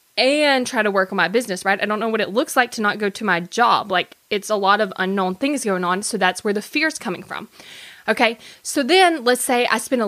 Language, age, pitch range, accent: English, 20-39, 195-245 Hz, American